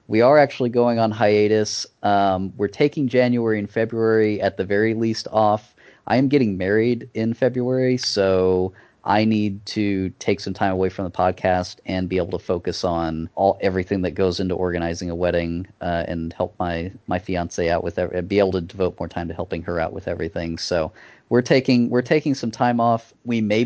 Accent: American